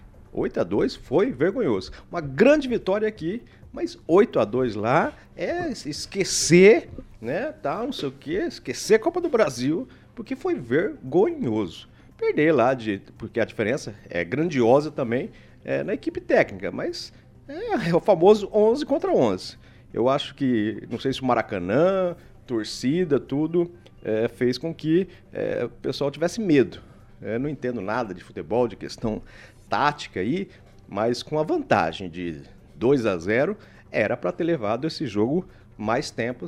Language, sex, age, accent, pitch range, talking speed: Portuguese, male, 50-69, Brazilian, 120-200 Hz, 155 wpm